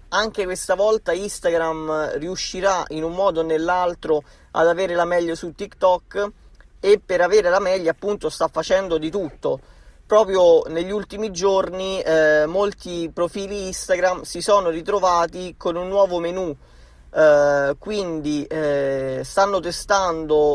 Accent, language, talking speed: native, Italian, 135 wpm